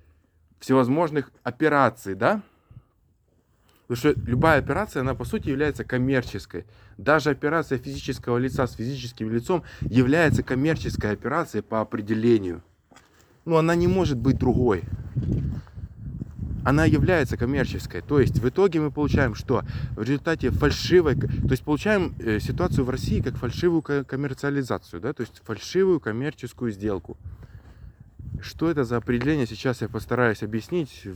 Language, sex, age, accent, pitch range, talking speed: Russian, male, 20-39, native, 110-150 Hz, 125 wpm